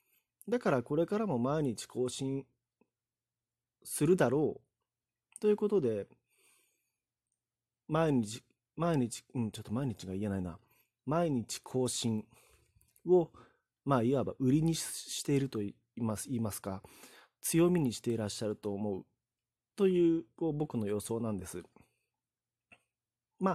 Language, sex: Japanese, male